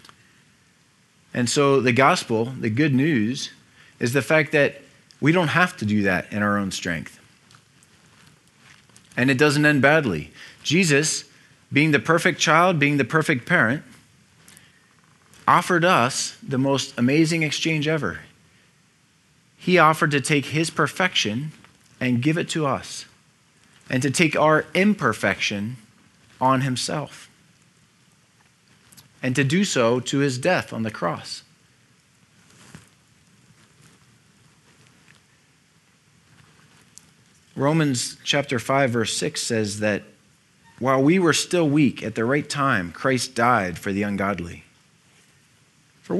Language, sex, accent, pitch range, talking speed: English, male, American, 125-160 Hz, 120 wpm